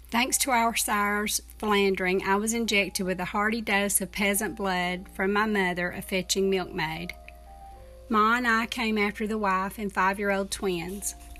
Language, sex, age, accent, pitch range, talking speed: English, female, 40-59, American, 185-215 Hz, 165 wpm